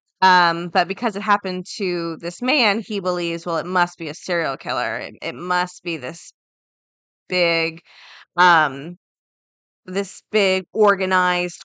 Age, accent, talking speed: 20-39, American, 140 wpm